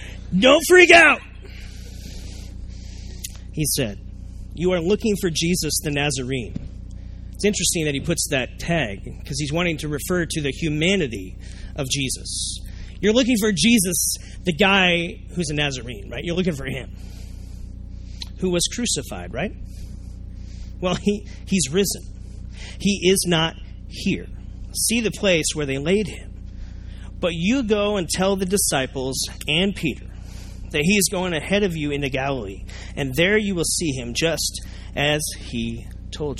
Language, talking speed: English, 150 wpm